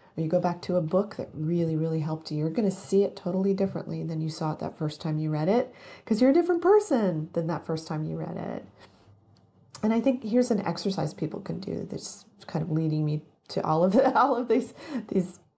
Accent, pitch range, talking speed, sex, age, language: American, 165-195 Hz, 235 wpm, female, 40-59, English